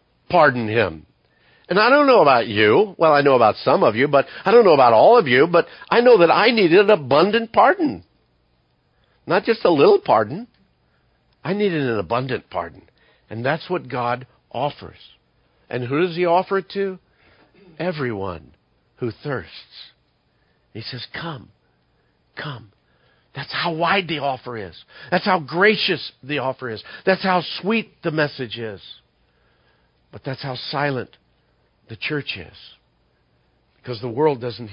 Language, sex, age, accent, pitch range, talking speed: English, male, 60-79, American, 110-175 Hz, 155 wpm